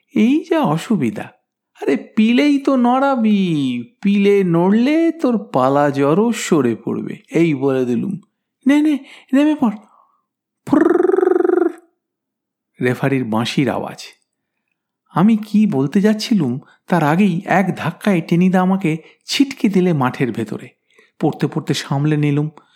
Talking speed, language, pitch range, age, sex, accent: 105 wpm, Bengali, 150-235 Hz, 50-69, male, native